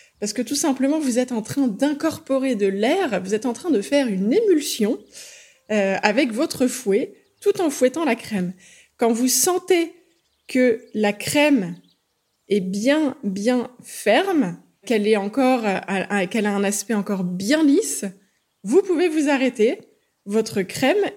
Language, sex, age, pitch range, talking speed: French, female, 20-39, 220-310 Hz, 160 wpm